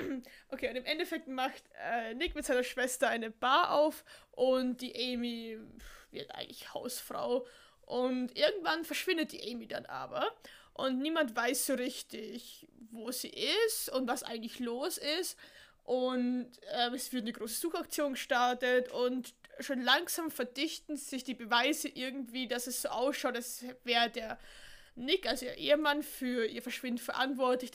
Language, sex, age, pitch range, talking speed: German, female, 20-39, 240-280 Hz, 150 wpm